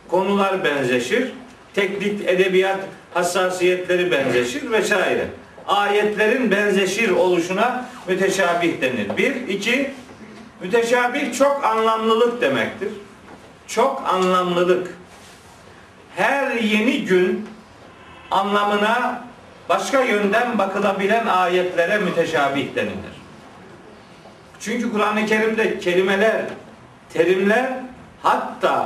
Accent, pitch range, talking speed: native, 180-230 Hz, 75 wpm